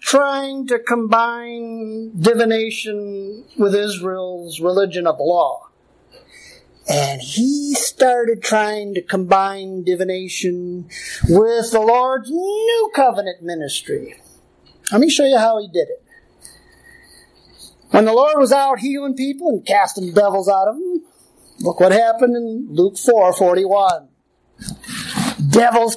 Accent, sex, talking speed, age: American, male, 120 wpm, 50-69